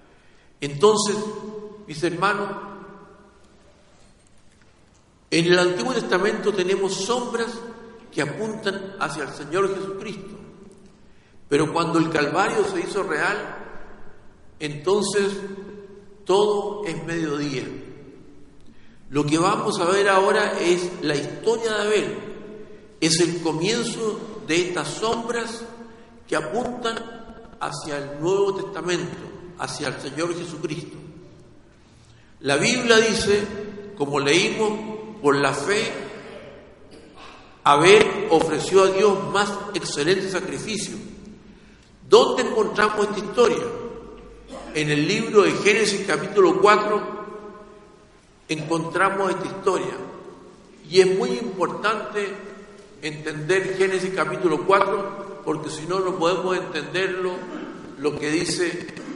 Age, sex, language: 50-69, male, Spanish